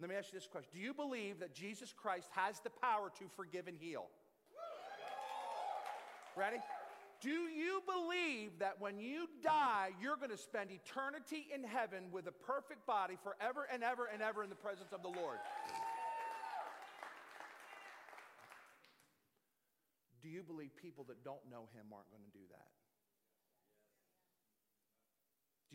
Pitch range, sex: 130-215 Hz, male